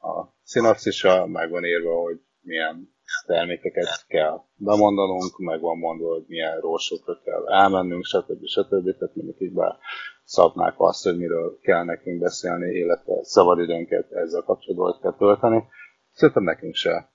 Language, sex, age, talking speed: Hungarian, male, 30-49, 140 wpm